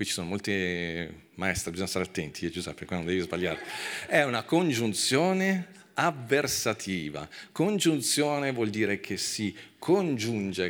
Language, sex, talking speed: Italian, male, 130 wpm